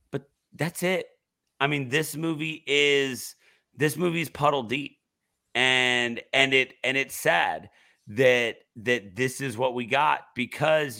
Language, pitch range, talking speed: English, 110-140 Hz, 135 wpm